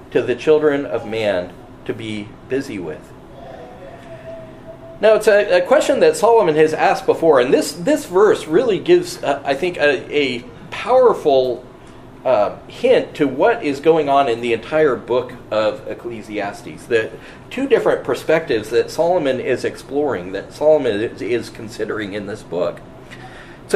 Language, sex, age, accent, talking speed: English, male, 40-59, American, 150 wpm